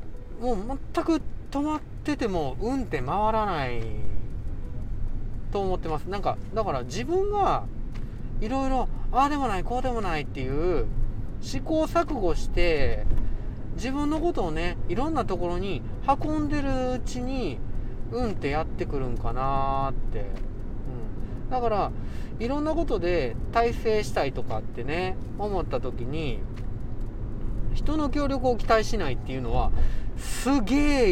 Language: Japanese